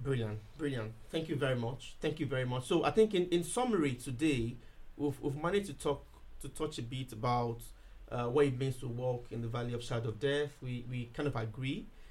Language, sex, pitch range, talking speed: English, male, 120-150 Hz, 220 wpm